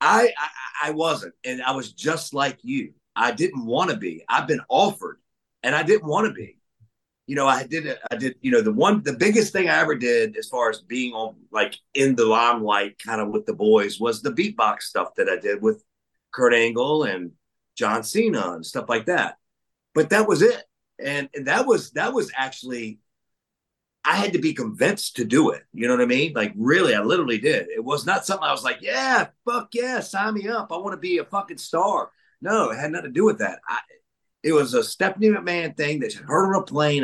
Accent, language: American, English